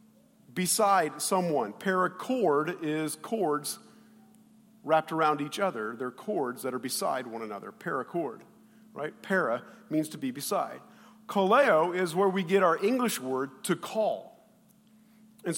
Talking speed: 130 wpm